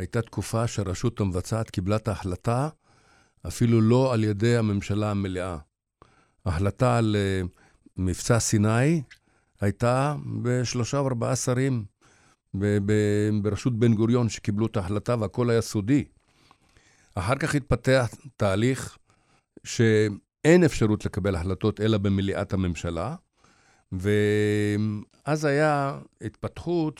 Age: 50-69